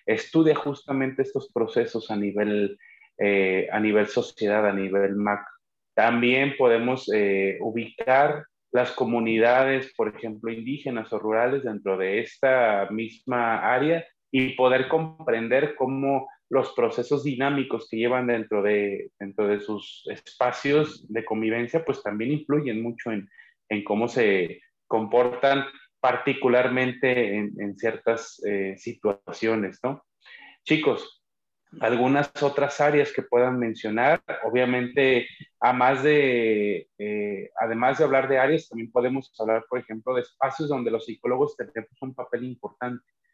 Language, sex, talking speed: Spanish, male, 125 wpm